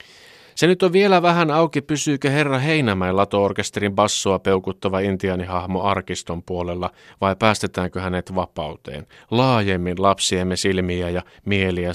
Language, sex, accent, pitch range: Finnish, male, native, 95-135 Hz